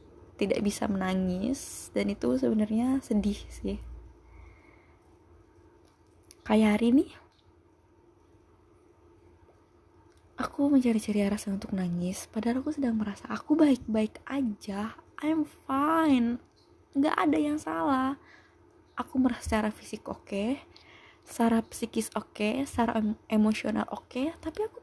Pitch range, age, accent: 210-265 Hz, 20-39, native